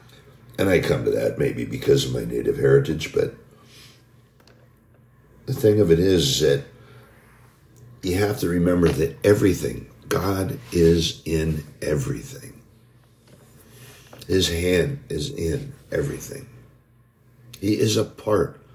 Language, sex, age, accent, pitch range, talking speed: English, male, 60-79, American, 115-135 Hz, 120 wpm